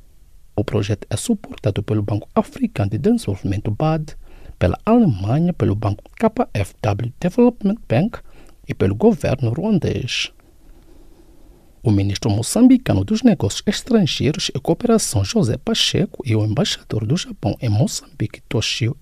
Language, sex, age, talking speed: English, male, 50-69, 125 wpm